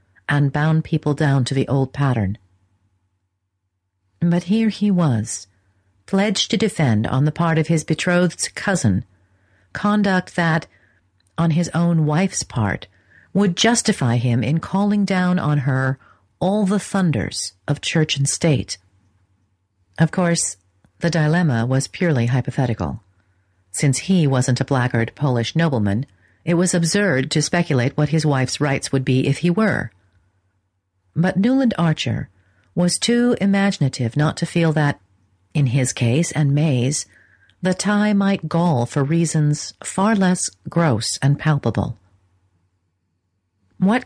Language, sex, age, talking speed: English, female, 50-69, 135 wpm